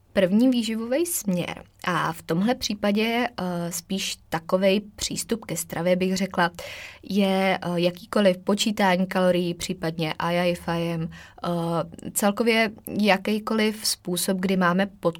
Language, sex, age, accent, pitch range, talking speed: Czech, female, 20-39, native, 170-195 Hz, 115 wpm